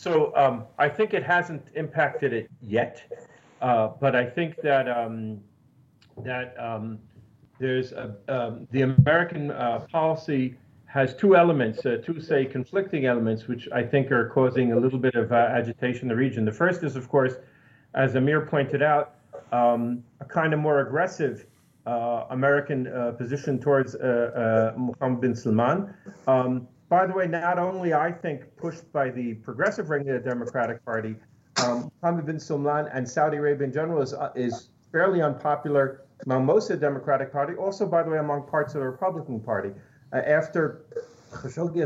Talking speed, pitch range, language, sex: 175 wpm, 120-150 Hz, English, male